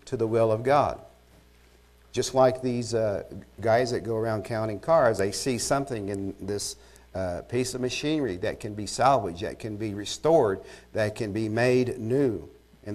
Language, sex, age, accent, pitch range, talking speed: English, male, 50-69, American, 100-130 Hz, 175 wpm